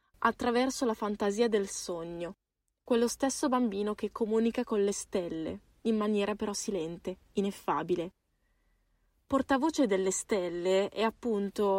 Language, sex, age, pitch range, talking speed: Italian, female, 20-39, 185-230 Hz, 115 wpm